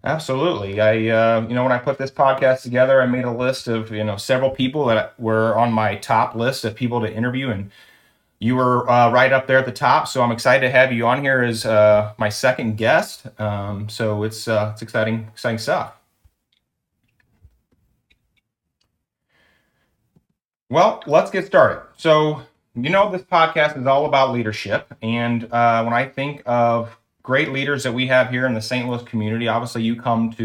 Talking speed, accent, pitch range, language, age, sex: 185 wpm, American, 110-130 Hz, English, 30-49, male